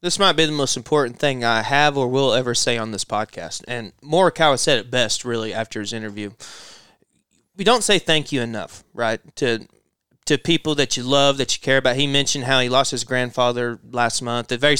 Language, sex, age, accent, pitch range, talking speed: English, male, 20-39, American, 120-150 Hz, 215 wpm